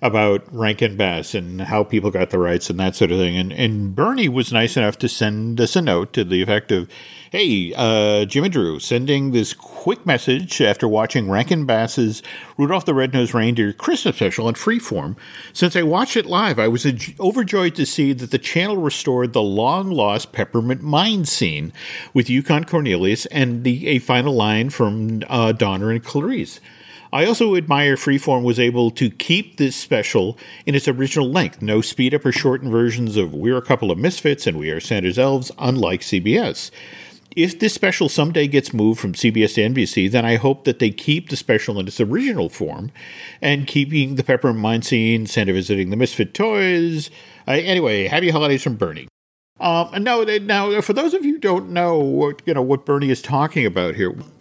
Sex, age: male, 50-69